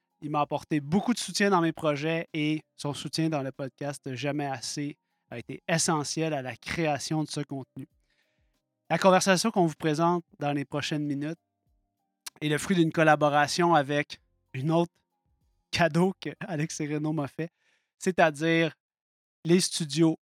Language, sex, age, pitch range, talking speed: French, male, 30-49, 145-170 Hz, 160 wpm